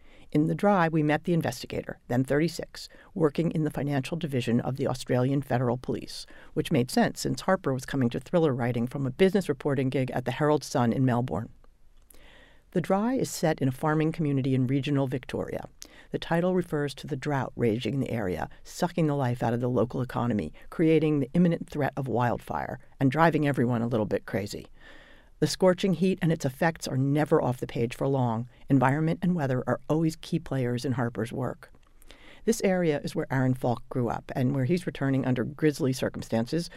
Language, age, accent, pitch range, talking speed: English, 50-69, American, 125-160 Hz, 195 wpm